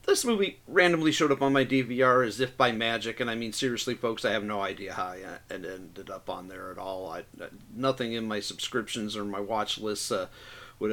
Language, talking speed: English, 220 wpm